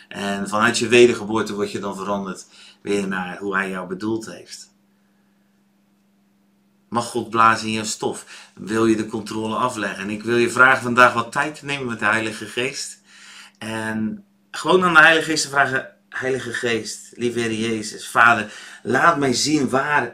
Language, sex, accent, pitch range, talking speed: Dutch, male, Dutch, 105-130 Hz, 170 wpm